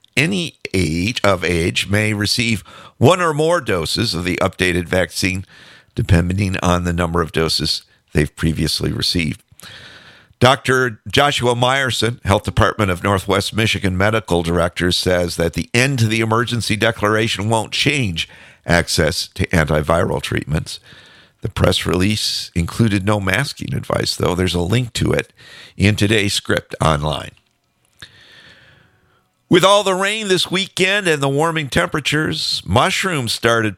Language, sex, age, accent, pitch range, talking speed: English, male, 50-69, American, 90-125 Hz, 135 wpm